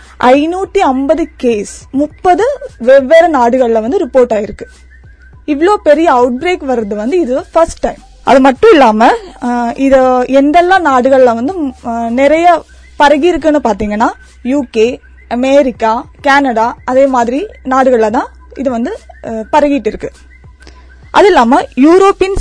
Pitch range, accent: 240-325 Hz, native